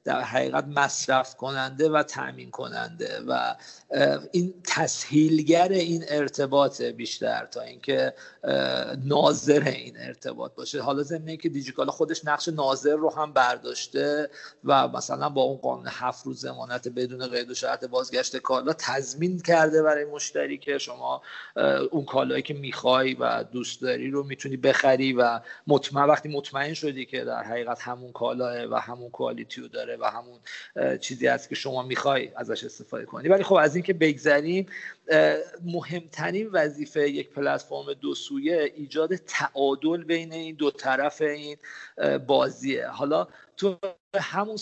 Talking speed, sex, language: 145 wpm, male, Persian